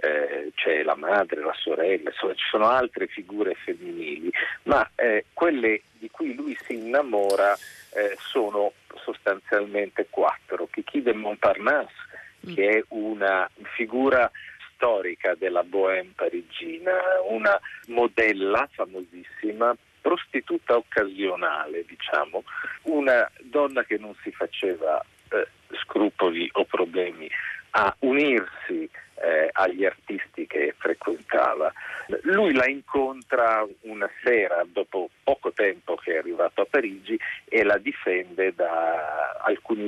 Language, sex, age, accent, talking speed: Italian, male, 50-69, native, 115 wpm